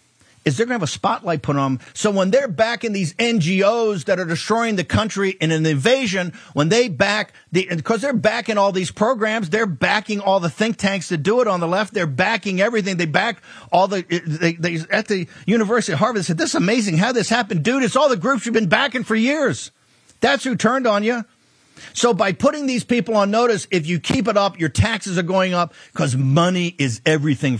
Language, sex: English, male